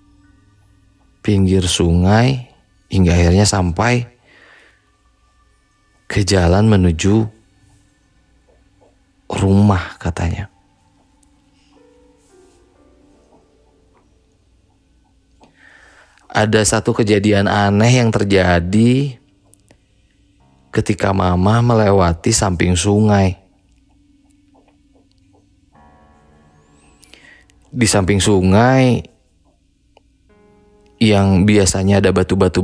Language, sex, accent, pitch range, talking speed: Indonesian, male, native, 95-110 Hz, 50 wpm